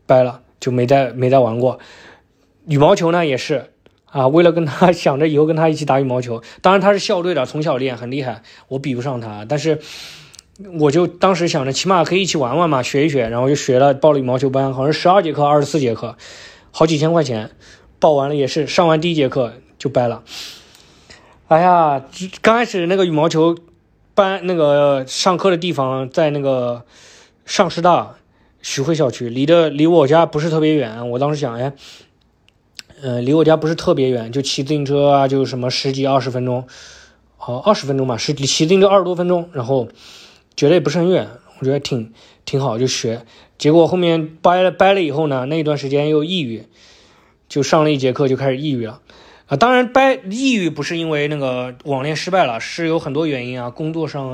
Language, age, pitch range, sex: Chinese, 20-39, 130-165 Hz, male